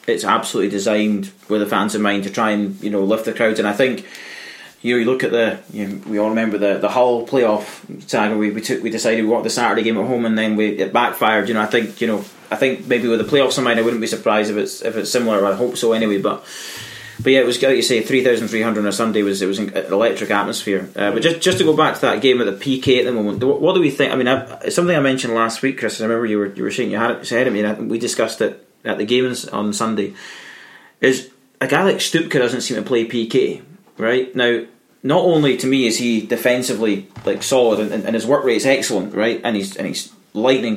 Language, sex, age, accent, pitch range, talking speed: English, male, 20-39, British, 105-125 Hz, 270 wpm